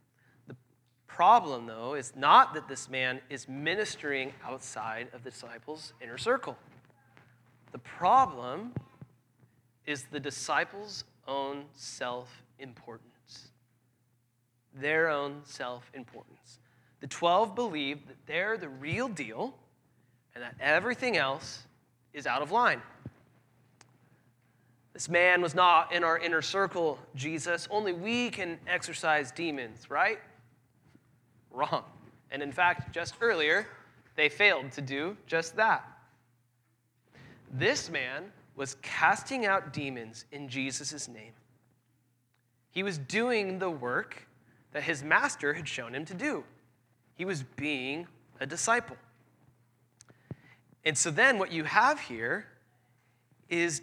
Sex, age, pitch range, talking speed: male, 30-49, 125-160 Hz, 115 wpm